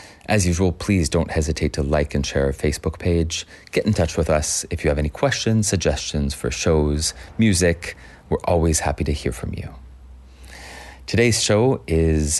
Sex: male